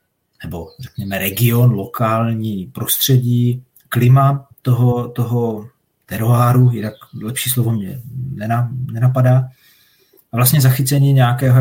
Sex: male